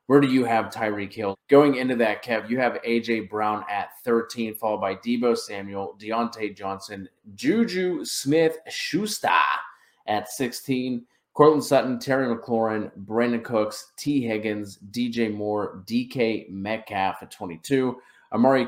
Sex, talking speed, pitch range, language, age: male, 130 wpm, 100-120 Hz, English, 30-49